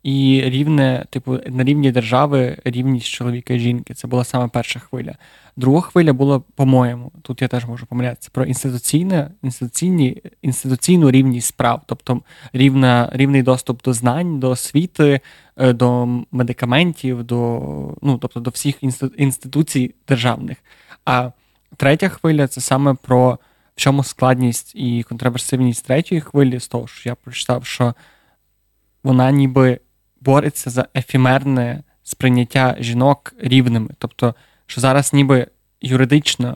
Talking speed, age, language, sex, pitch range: 130 wpm, 20-39, Ukrainian, male, 125-140 Hz